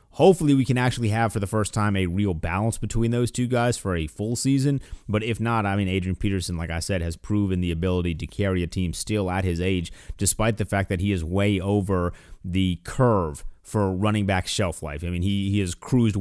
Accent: American